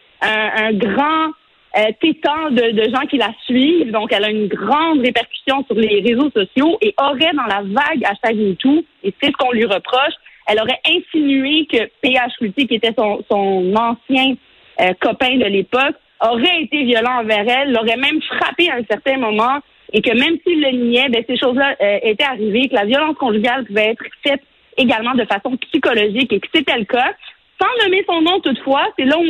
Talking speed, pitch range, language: 200 wpm, 225-285 Hz, French